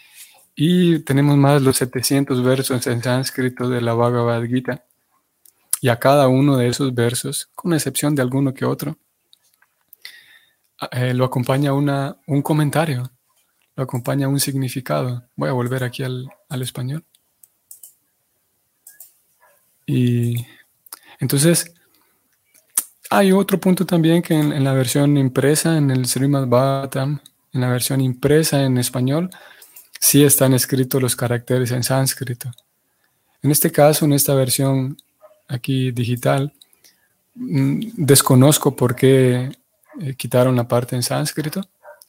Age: 30-49